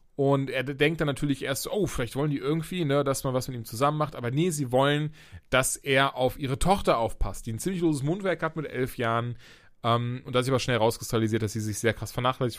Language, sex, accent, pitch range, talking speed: German, male, German, 125-155 Hz, 245 wpm